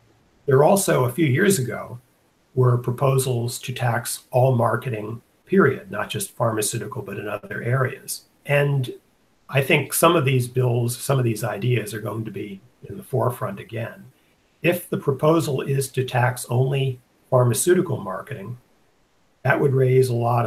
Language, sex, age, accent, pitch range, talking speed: English, male, 50-69, American, 115-130 Hz, 155 wpm